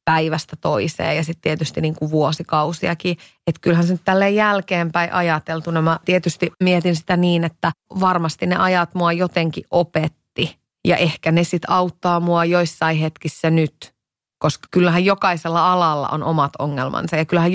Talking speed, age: 145 wpm, 30-49